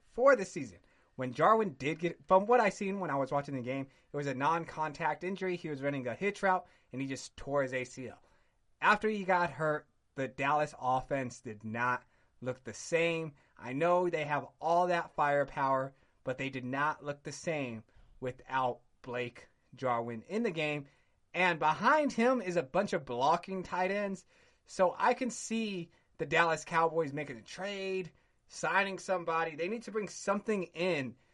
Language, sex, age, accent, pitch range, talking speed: English, male, 30-49, American, 140-190 Hz, 180 wpm